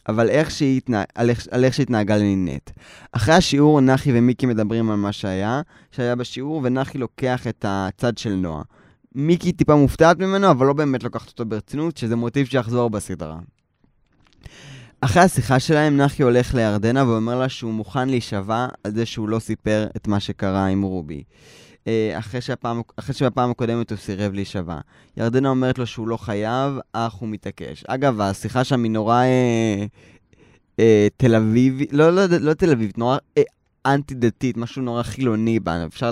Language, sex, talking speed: Hebrew, male, 160 wpm